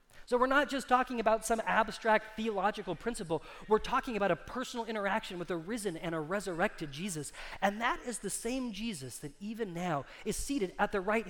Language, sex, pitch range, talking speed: English, male, 175-225 Hz, 195 wpm